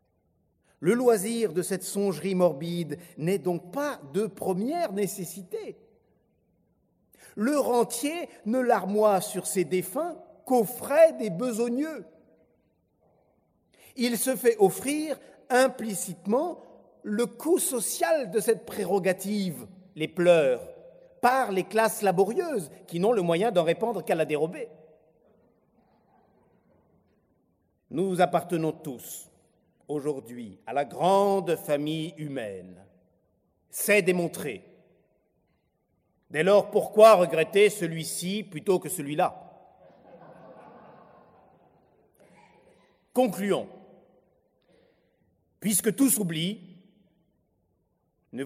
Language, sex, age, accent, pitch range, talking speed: French, male, 50-69, French, 170-235 Hz, 90 wpm